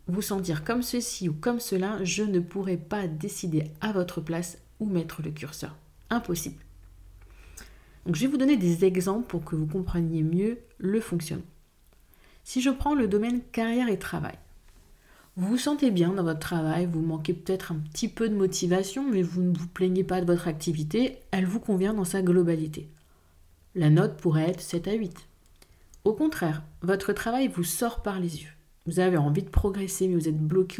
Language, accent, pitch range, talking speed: French, French, 155-205 Hz, 190 wpm